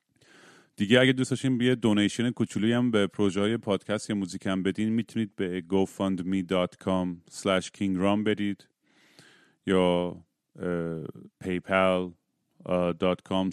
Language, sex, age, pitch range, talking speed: Persian, male, 30-49, 95-110 Hz, 100 wpm